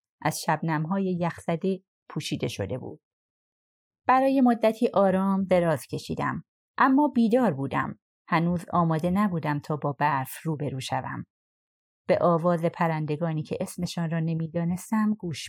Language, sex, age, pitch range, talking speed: Persian, female, 30-49, 155-190 Hz, 115 wpm